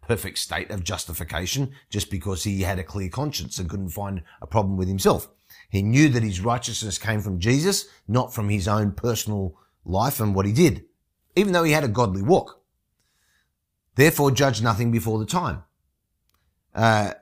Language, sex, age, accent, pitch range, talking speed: English, male, 30-49, Australian, 90-125 Hz, 175 wpm